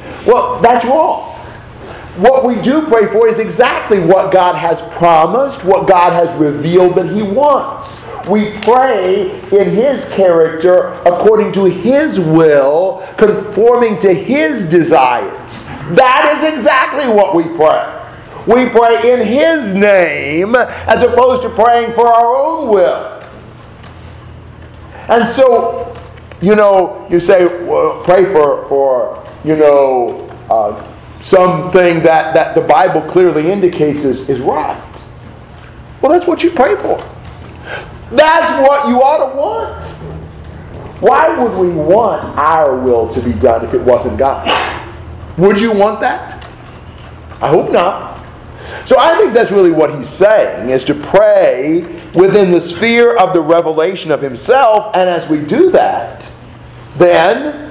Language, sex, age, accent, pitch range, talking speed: English, male, 50-69, American, 165-245 Hz, 135 wpm